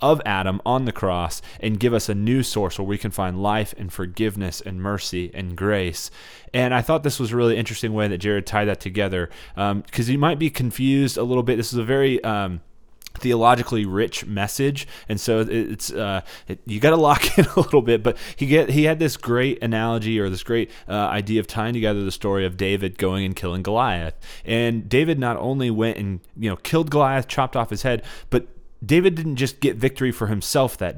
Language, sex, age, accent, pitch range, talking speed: English, male, 20-39, American, 95-120 Hz, 220 wpm